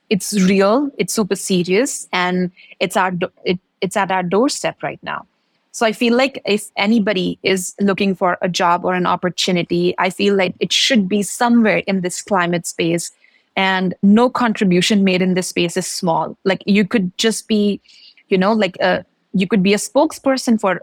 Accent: Indian